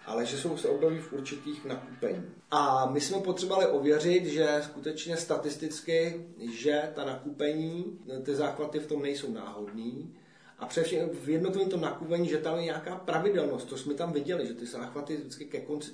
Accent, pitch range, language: native, 130-175 Hz, Czech